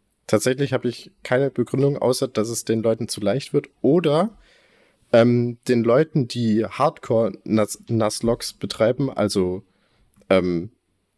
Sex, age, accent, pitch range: male, 20-39, German, 100-120 Hz